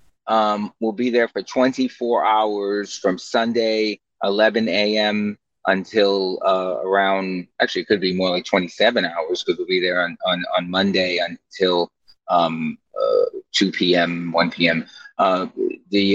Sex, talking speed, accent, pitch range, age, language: male, 140 wpm, American, 95-120 Hz, 30-49, English